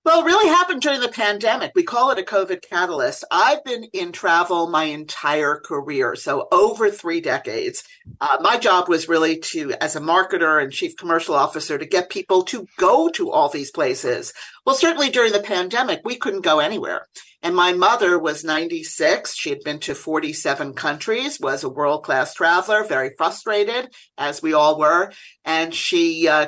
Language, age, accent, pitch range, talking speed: English, 50-69, American, 155-255 Hz, 180 wpm